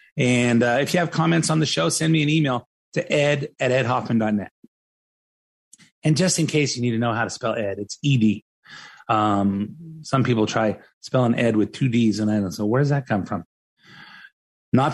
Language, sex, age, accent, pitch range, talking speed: English, male, 30-49, American, 120-165 Hz, 200 wpm